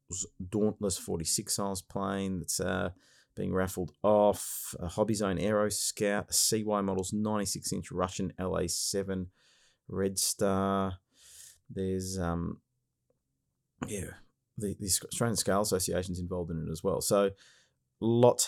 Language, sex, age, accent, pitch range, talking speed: English, male, 30-49, Australian, 90-110 Hz, 125 wpm